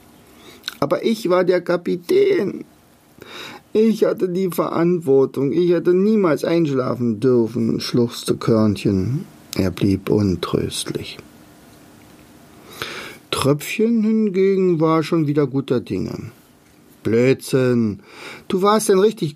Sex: male